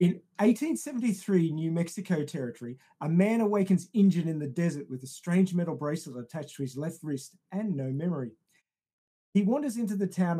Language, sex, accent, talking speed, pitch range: English, male, Australian, 175 wpm, 150-190 Hz